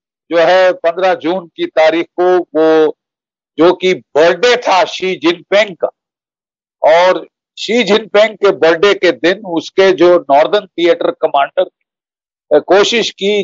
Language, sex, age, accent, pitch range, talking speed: Hindi, male, 60-79, native, 165-215 Hz, 125 wpm